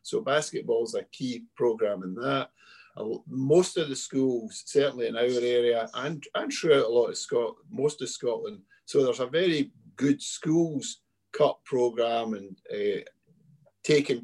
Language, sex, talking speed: English, male, 155 wpm